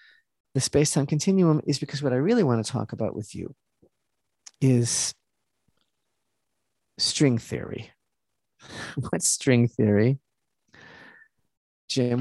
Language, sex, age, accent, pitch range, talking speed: English, male, 50-69, American, 120-160 Hz, 105 wpm